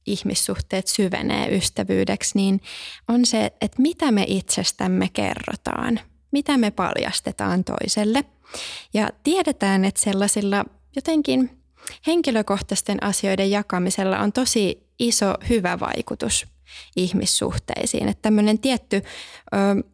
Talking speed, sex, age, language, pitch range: 100 wpm, female, 20-39, Finnish, 185-235 Hz